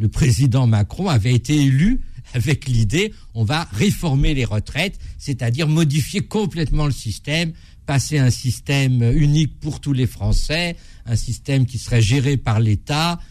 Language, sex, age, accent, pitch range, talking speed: French, male, 50-69, French, 115-145 Hz, 150 wpm